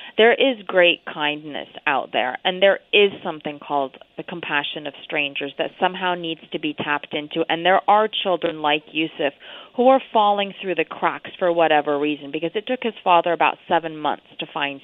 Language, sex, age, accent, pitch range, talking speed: English, female, 30-49, American, 155-200 Hz, 190 wpm